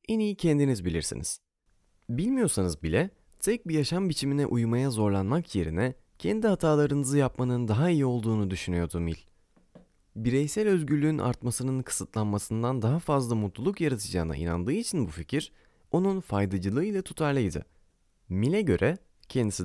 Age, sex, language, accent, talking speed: 30-49, male, Turkish, native, 120 wpm